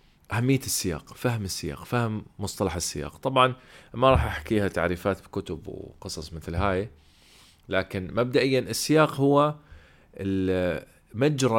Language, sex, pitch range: Arabic, male, 90-125 Hz